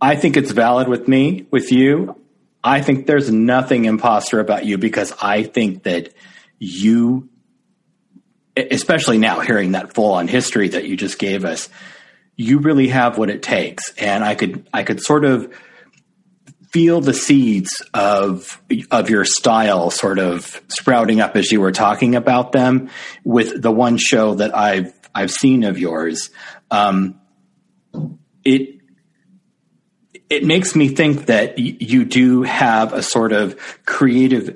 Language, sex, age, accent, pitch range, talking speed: English, male, 40-59, American, 110-145 Hz, 150 wpm